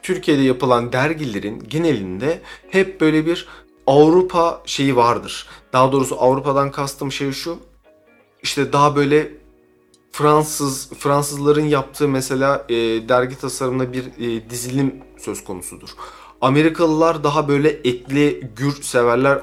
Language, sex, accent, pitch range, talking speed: Turkish, male, native, 115-140 Hz, 115 wpm